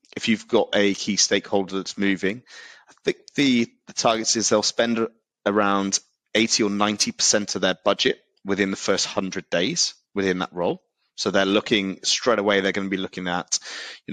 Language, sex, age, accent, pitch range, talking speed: English, male, 20-39, British, 95-110 Hz, 185 wpm